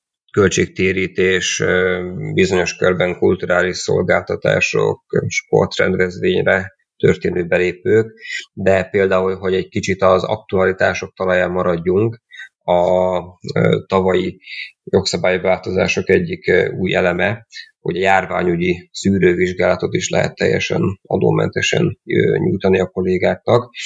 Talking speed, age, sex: 90 wpm, 30-49, male